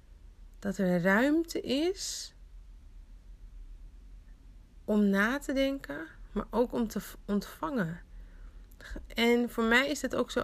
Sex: female